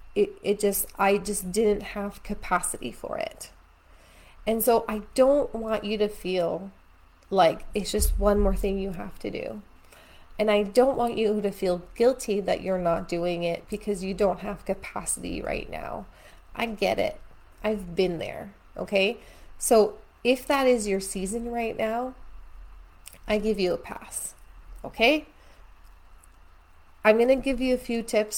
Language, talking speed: English, 160 wpm